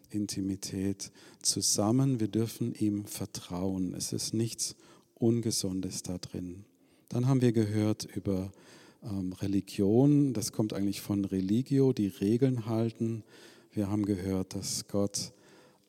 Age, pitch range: 50-69, 95-115 Hz